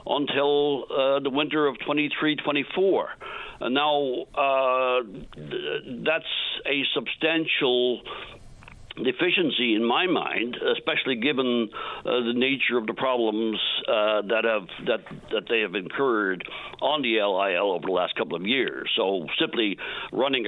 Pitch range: 120-145 Hz